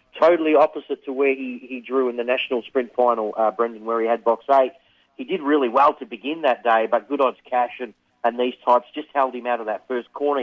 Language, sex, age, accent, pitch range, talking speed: English, male, 40-59, Australian, 115-135 Hz, 245 wpm